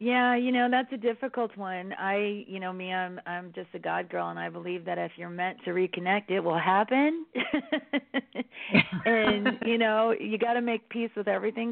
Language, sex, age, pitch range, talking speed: English, female, 40-59, 170-200 Hz, 200 wpm